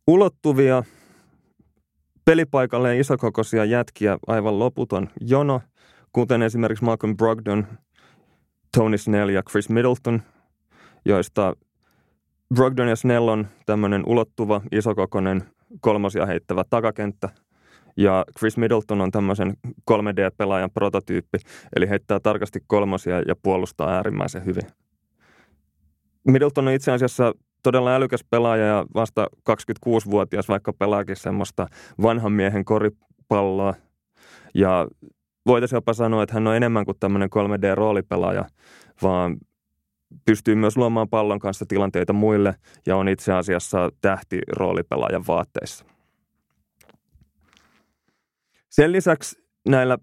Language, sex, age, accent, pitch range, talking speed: Finnish, male, 20-39, native, 95-120 Hz, 105 wpm